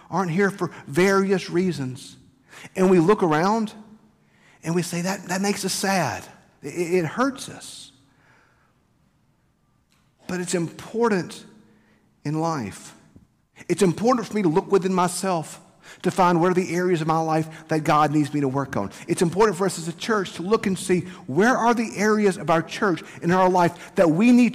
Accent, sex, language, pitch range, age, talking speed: American, male, English, 170-220 Hz, 50-69, 180 wpm